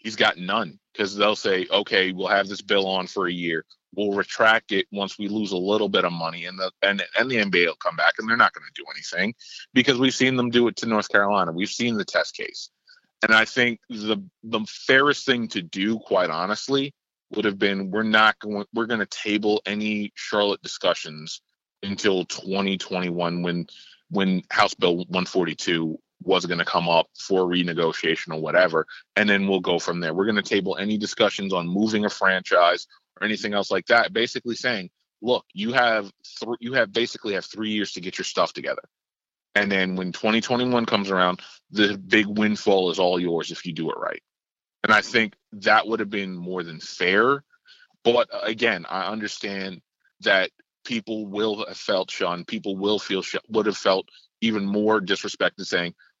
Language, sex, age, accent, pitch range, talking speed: English, male, 30-49, American, 95-110 Hz, 190 wpm